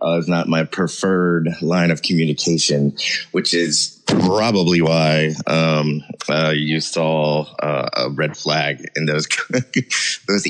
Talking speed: 130 wpm